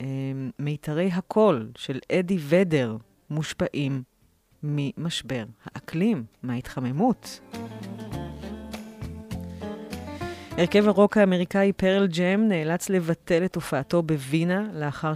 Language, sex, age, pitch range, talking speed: Hebrew, female, 30-49, 135-175 Hz, 80 wpm